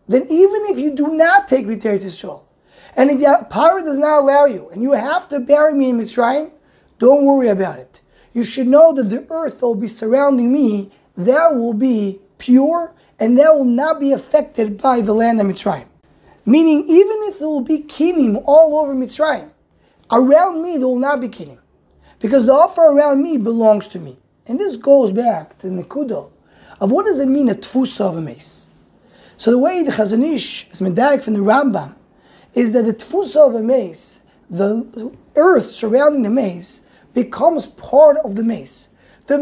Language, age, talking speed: English, 20-39, 190 wpm